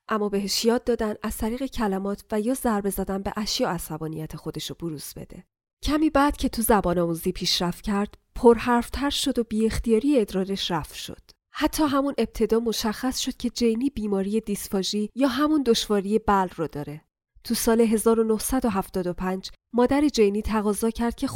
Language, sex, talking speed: Persian, female, 155 wpm